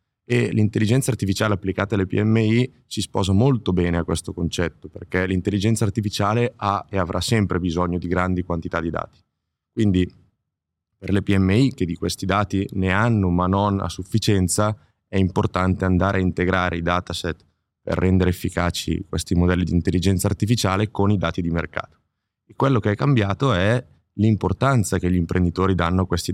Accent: native